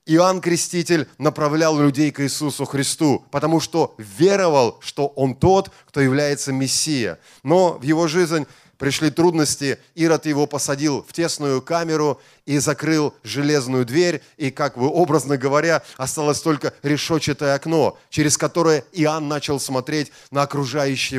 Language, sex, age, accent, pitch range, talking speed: Russian, male, 30-49, native, 145-175 Hz, 135 wpm